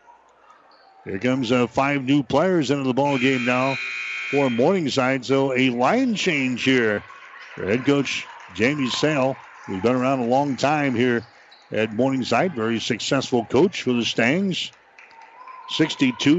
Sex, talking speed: male, 140 wpm